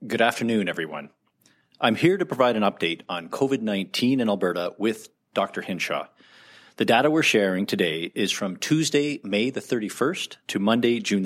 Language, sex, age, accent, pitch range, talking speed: English, male, 40-59, American, 110-150 Hz, 160 wpm